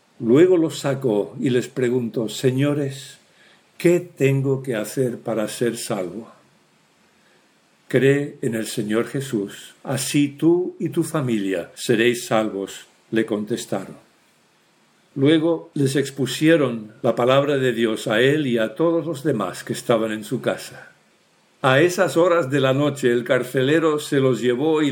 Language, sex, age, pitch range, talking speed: English, male, 60-79, 120-145 Hz, 140 wpm